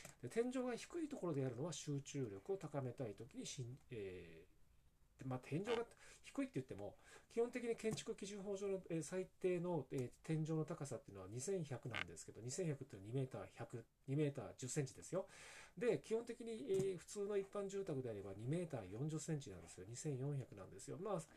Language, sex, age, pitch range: Japanese, male, 40-59, 130-190 Hz